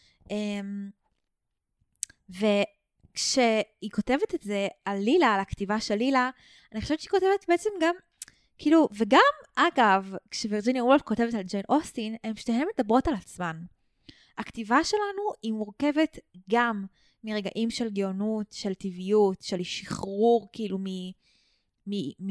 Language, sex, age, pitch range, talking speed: Hebrew, female, 20-39, 195-265 Hz, 120 wpm